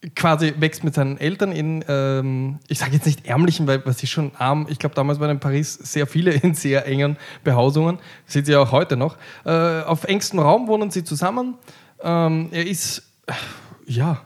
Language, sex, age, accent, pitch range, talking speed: German, male, 10-29, German, 140-170 Hz, 195 wpm